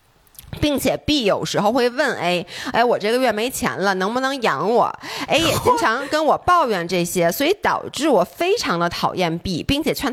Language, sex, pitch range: Chinese, female, 195-295 Hz